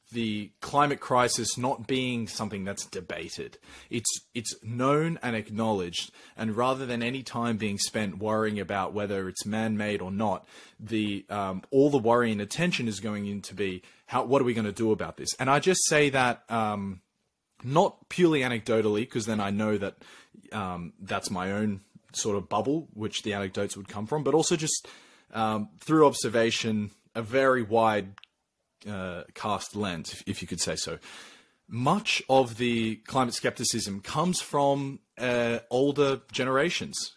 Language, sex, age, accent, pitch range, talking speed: English, male, 20-39, Australian, 105-130 Hz, 165 wpm